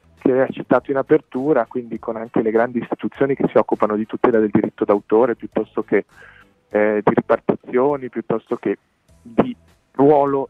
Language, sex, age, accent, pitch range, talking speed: Italian, male, 40-59, native, 120-150 Hz, 160 wpm